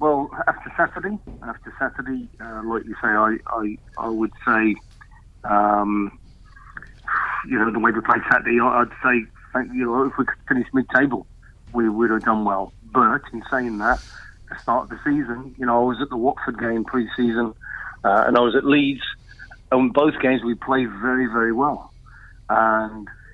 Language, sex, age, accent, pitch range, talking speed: English, male, 40-59, British, 110-130 Hz, 180 wpm